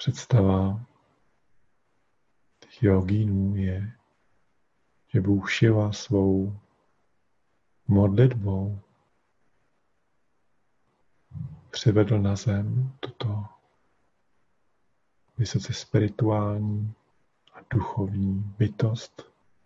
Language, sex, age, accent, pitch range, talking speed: Czech, male, 50-69, native, 100-115 Hz, 55 wpm